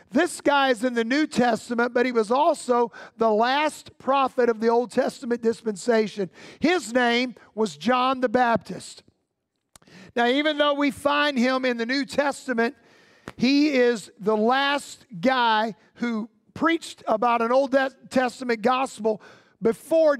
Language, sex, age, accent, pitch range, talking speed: English, male, 50-69, American, 235-285 Hz, 145 wpm